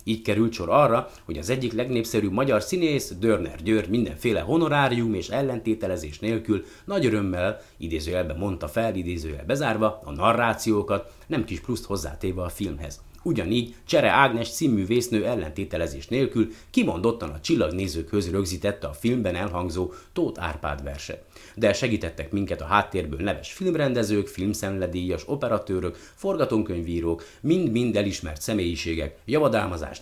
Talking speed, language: 125 wpm, Hungarian